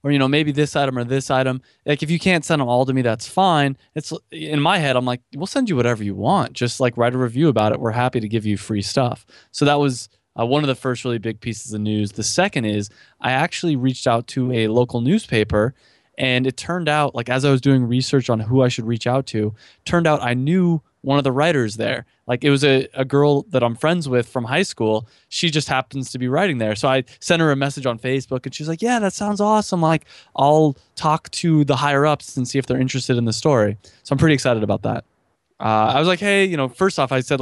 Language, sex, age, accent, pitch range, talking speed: English, male, 20-39, American, 120-145 Hz, 260 wpm